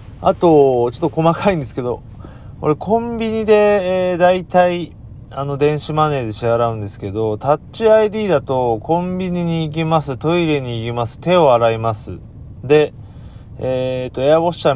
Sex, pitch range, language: male, 105-150 Hz, Japanese